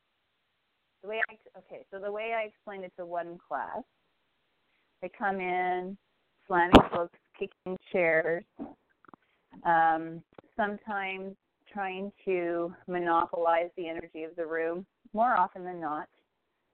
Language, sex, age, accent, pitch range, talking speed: English, female, 30-49, American, 170-205 Hz, 120 wpm